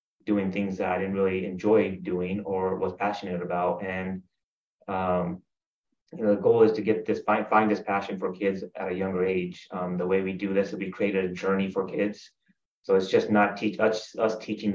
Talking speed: 215 wpm